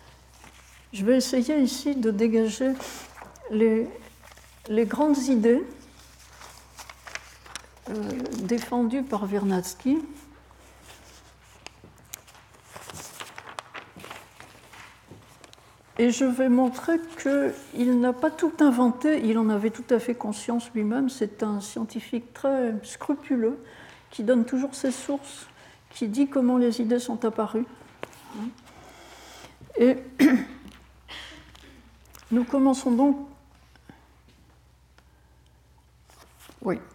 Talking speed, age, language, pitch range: 85 wpm, 60-79, French, 210-270 Hz